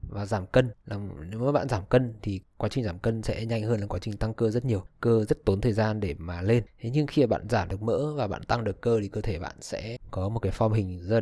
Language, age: Vietnamese, 20-39